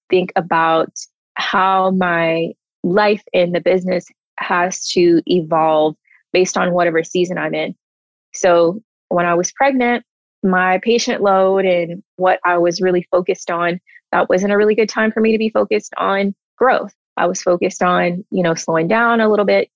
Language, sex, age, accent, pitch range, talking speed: English, female, 20-39, American, 170-195 Hz, 170 wpm